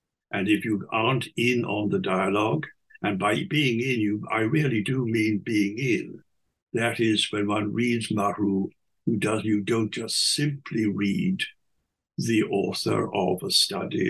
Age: 60-79